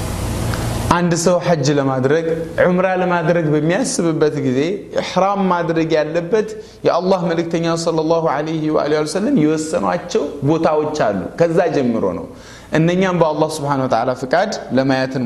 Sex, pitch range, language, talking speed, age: male, 135-185 Hz, Amharic, 135 wpm, 30-49